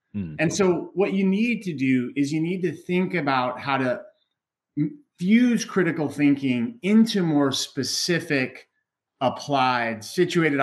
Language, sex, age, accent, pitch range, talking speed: English, male, 30-49, American, 120-155 Hz, 130 wpm